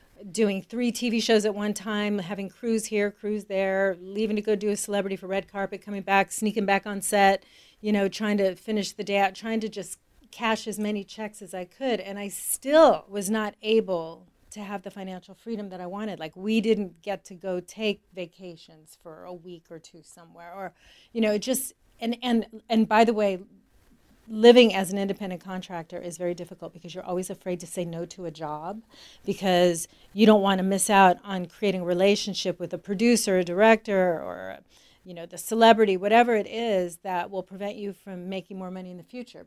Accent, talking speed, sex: American, 210 wpm, female